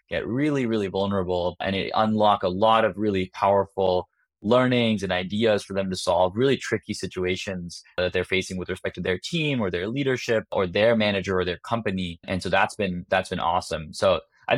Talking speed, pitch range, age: 190 wpm, 95-110 Hz, 20-39